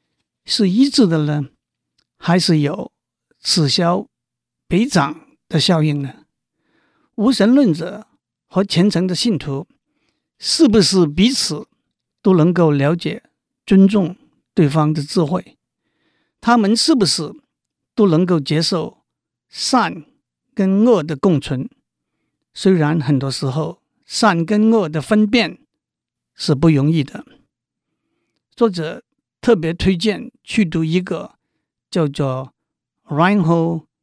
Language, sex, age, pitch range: Chinese, male, 50-69, 150-205 Hz